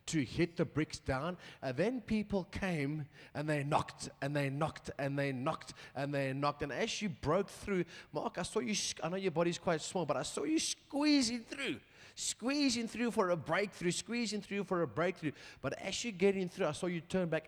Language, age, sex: English, 30-49, male